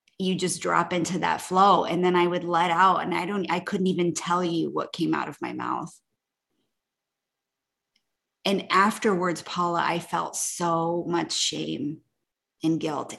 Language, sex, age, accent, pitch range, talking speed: English, female, 20-39, American, 165-190 Hz, 165 wpm